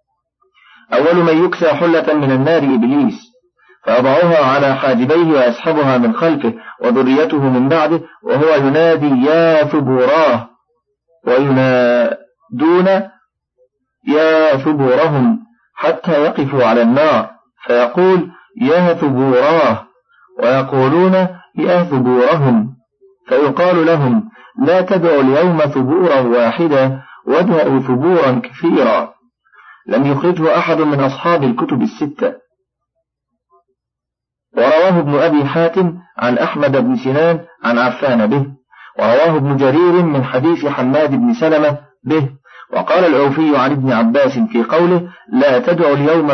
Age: 50-69